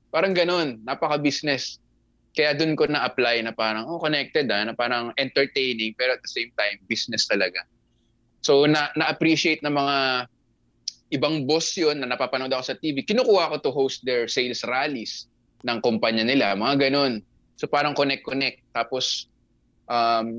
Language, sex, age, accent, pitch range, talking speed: Filipino, male, 20-39, native, 115-150 Hz, 155 wpm